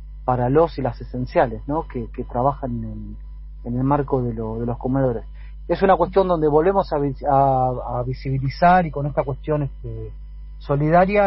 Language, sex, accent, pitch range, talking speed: Spanish, male, Argentinian, 120-155 Hz, 180 wpm